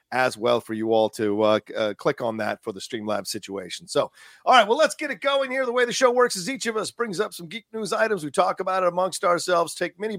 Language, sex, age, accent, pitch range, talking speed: English, male, 40-59, American, 155-230 Hz, 275 wpm